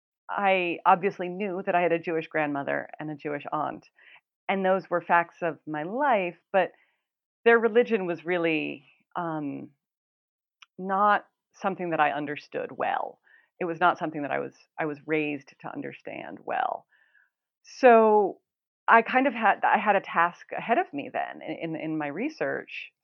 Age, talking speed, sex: 40-59, 160 wpm, female